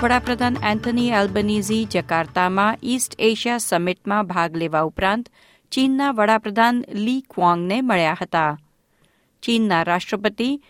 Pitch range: 180-245 Hz